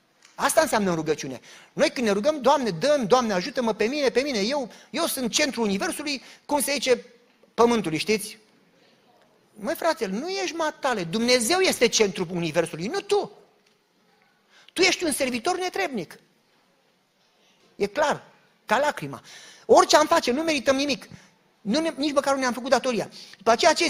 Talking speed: 155 wpm